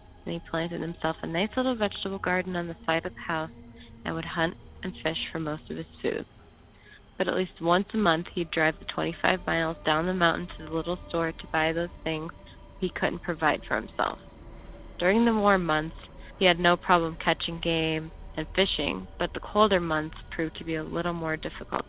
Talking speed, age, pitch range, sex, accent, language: 205 wpm, 20-39, 160-190 Hz, female, American, English